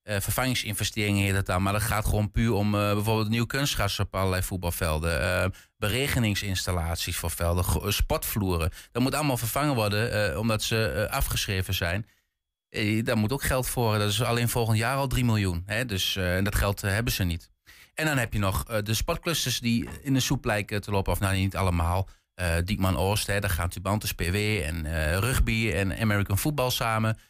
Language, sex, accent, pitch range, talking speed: Dutch, male, Dutch, 95-115 Hz, 205 wpm